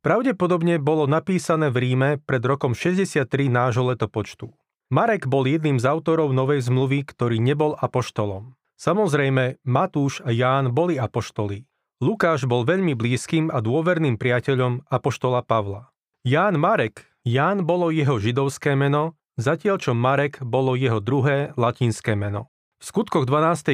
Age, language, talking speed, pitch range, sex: 30-49, Slovak, 135 wpm, 125-155 Hz, male